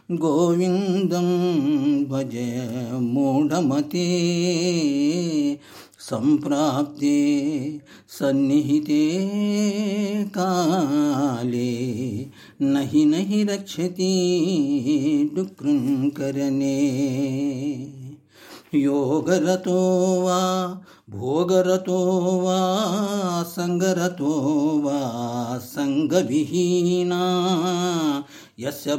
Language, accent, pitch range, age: Telugu, native, 145-185 Hz, 50-69